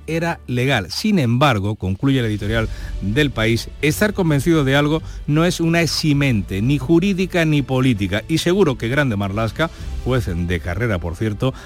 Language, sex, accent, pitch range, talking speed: Spanish, male, Spanish, 105-145 Hz, 160 wpm